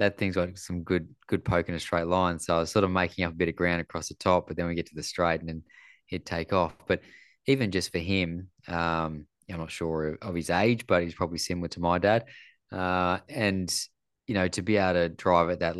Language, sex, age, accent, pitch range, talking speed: English, male, 20-39, Australian, 80-90 Hz, 255 wpm